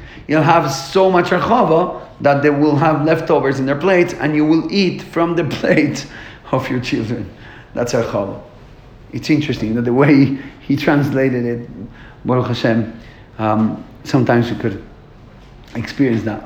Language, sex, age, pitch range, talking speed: English, male, 40-59, 125-155 Hz, 150 wpm